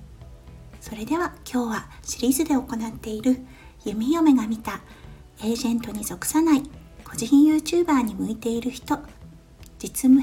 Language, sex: Japanese, female